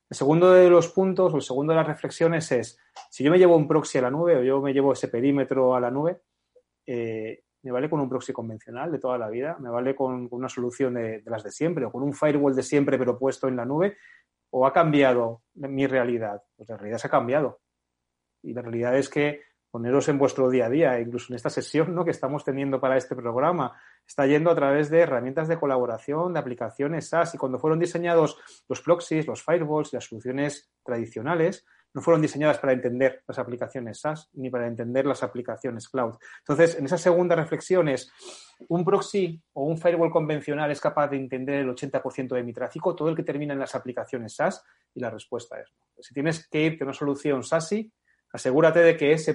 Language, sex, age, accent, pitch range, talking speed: Spanish, male, 30-49, Spanish, 130-165 Hz, 215 wpm